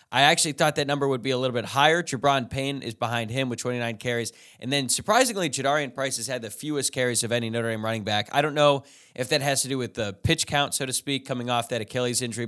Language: English